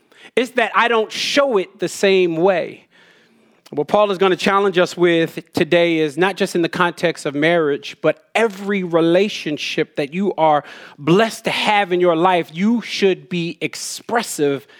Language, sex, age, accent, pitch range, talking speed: English, male, 30-49, American, 160-200 Hz, 170 wpm